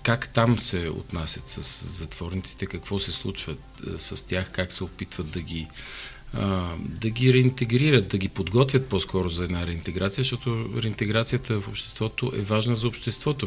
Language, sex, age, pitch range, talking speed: Bulgarian, male, 40-59, 95-120 Hz, 150 wpm